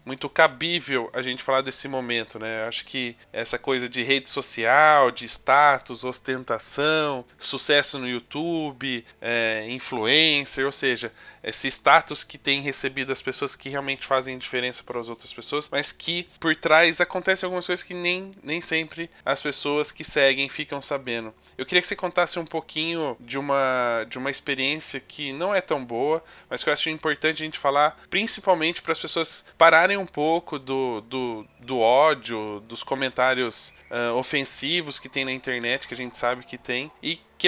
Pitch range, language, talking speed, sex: 130-160 Hz, Portuguese, 170 wpm, male